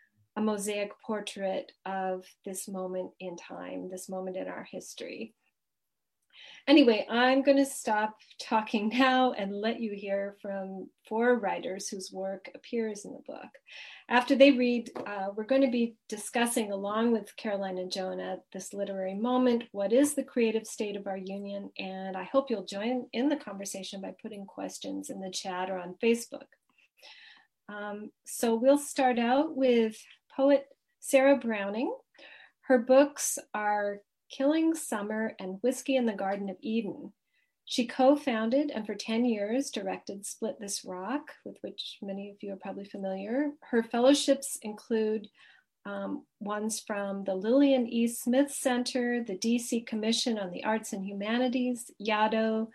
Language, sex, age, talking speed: English, female, 40-59, 150 wpm